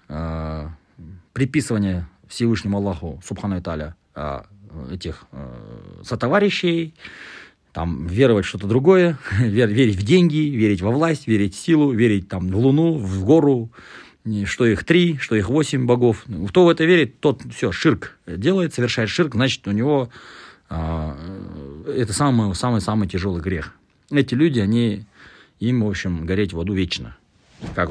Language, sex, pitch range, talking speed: Russian, male, 90-125 Hz, 140 wpm